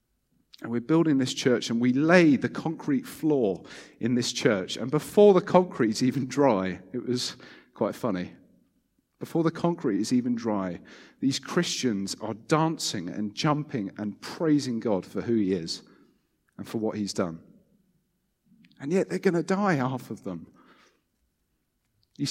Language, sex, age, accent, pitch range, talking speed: English, male, 40-59, British, 95-155 Hz, 160 wpm